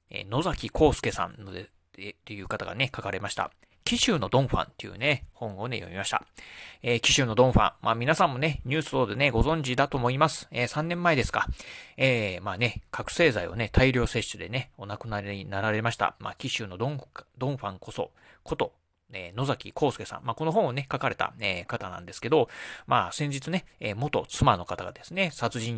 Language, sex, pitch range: Japanese, male, 105-145 Hz